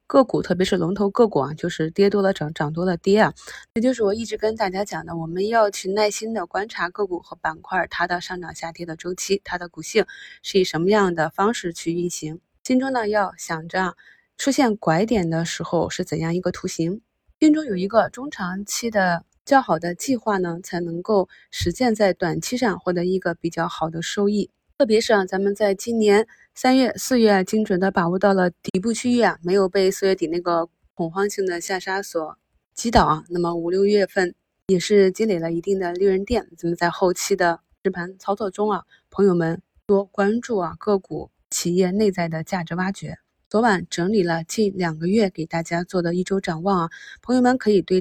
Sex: female